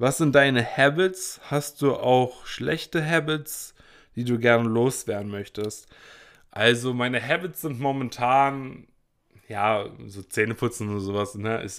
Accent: German